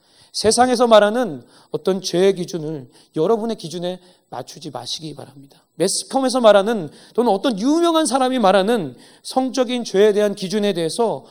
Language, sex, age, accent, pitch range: Korean, male, 30-49, native, 140-185 Hz